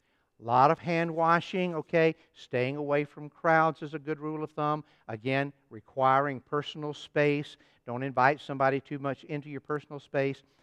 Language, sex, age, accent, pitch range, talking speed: English, male, 60-79, American, 130-165 Hz, 165 wpm